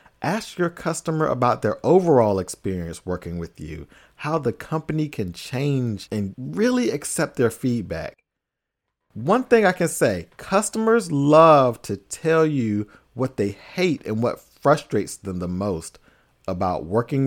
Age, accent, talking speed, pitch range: 40-59, American, 145 wpm, 105-155 Hz